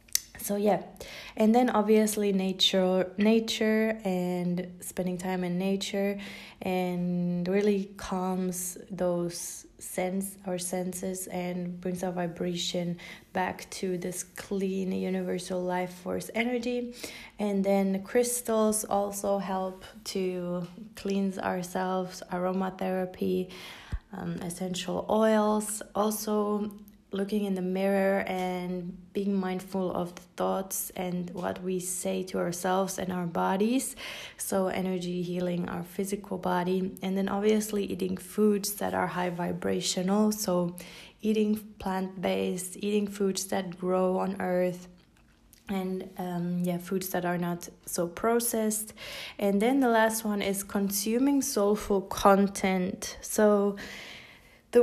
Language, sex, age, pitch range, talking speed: English, female, 20-39, 180-205 Hz, 120 wpm